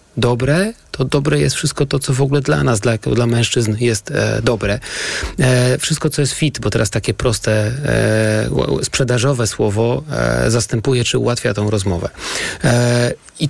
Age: 40-59